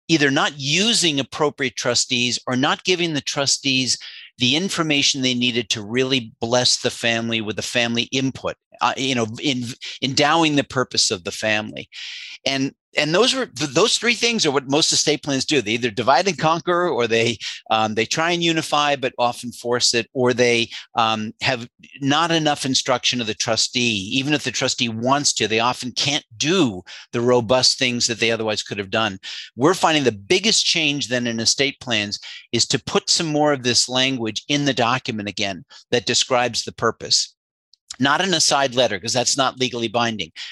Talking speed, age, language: 185 wpm, 50-69, English